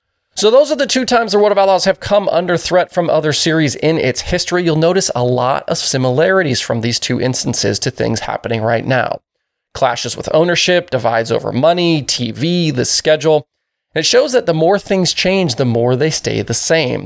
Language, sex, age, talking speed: English, male, 20-39, 200 wpm